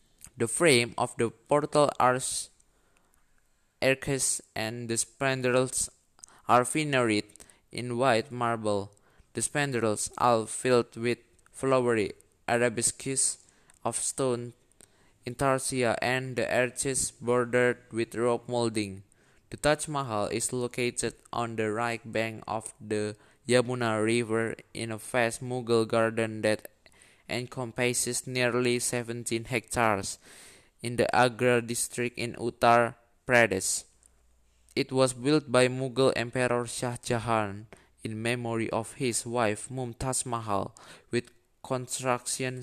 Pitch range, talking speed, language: 110-125 Hz, 110 wpm, Indonesian